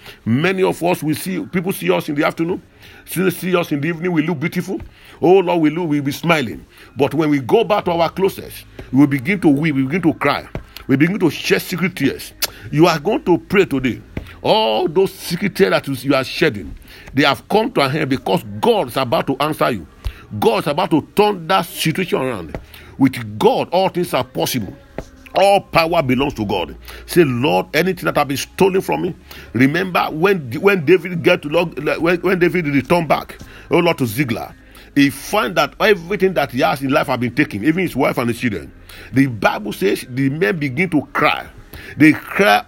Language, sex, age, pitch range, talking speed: English, male, 50-69, 130-180 Hz, 200 wpm